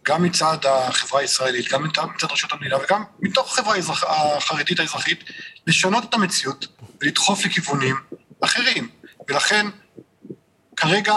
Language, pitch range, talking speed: Hebrew, 155-200 Hz, 115 wpm